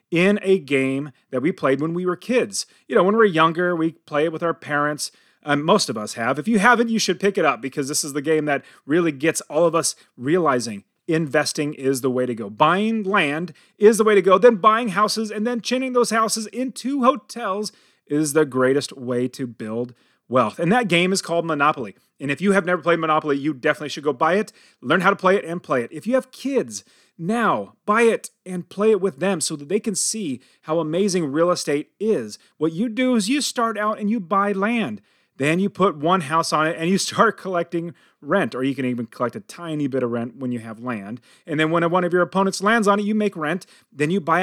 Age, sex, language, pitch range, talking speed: 30-49, male, English, 150-210 Hz, 240 wpm